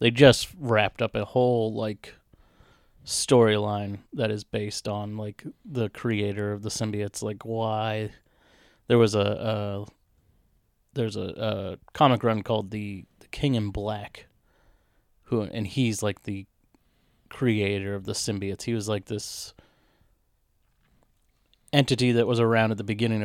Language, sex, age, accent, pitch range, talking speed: English, male, 30-49, American, 100-115 Hz, 140 wpm